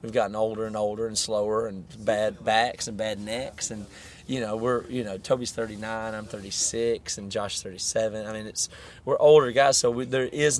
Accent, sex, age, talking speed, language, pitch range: American, male, 30-49, 200 wpm, English, 105-125 Hz